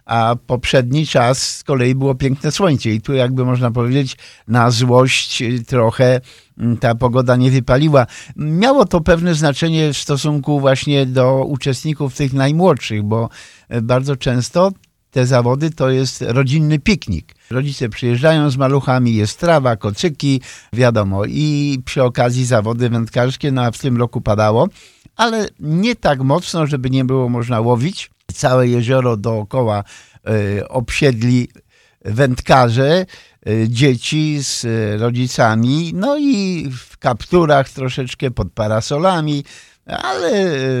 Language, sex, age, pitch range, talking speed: Polish, male, 50-69, 115-145 Hz, 120 wpm